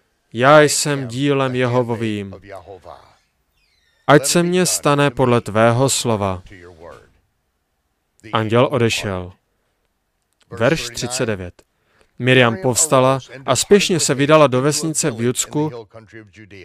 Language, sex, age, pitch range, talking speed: Slovak, male, 30-49, 130-185 Hz, 90 wpm